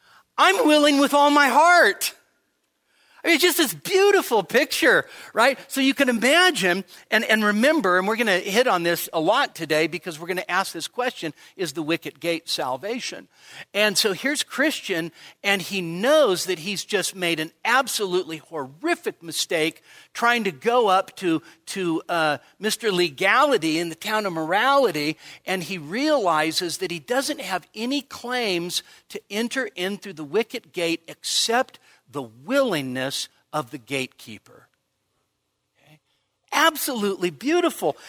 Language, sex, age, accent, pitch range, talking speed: English, male, 50-69, American, 165-250 Hz, 150 wpm